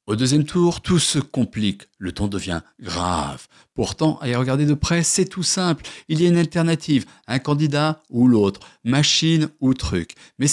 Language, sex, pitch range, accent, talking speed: French, male, 125-165 Hz, French, 180 wpm